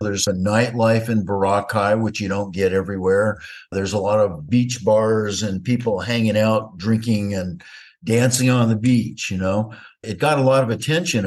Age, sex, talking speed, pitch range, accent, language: 50-69, male, 180 wpm, 105-130 Hz, American, English